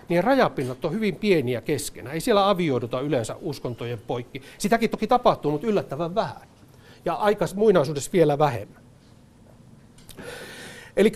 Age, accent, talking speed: 60-79, native, 125 wpm